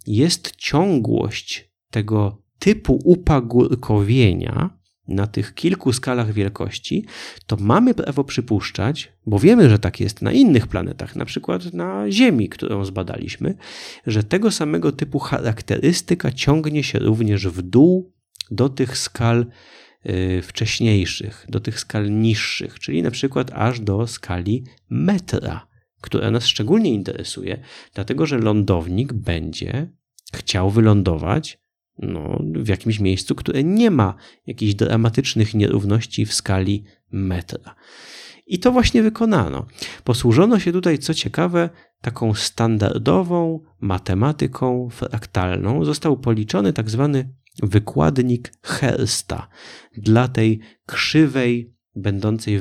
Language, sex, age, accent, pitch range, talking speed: Polish, male, 30-49, native, 100-135 Hz, 110 wpm